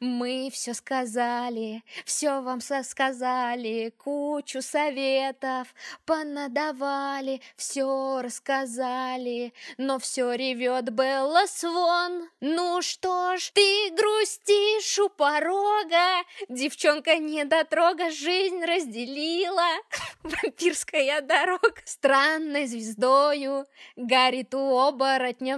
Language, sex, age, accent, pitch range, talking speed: Russian, female, 20-39, native, 265-355 Hz, 80 wpm